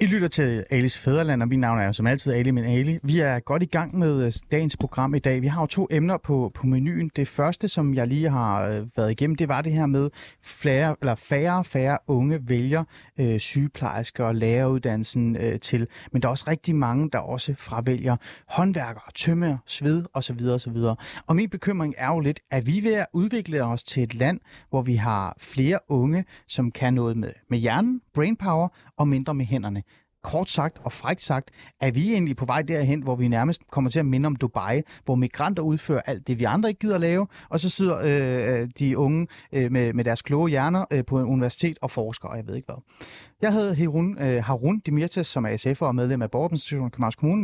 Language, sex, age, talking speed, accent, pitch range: Danish, male, 30-49, 220 wpm, native, 125-160 Hz